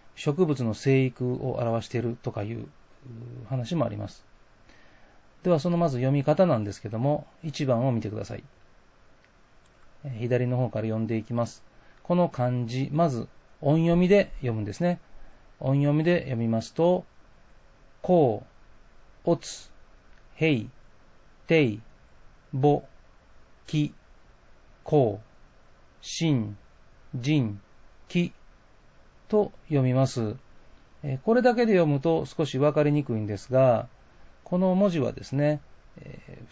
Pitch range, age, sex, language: 110-155 Hz, 40-59, male, Japanese